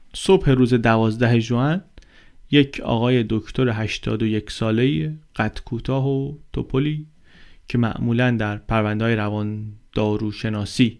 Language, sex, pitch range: Persian, male, 110-135 Hz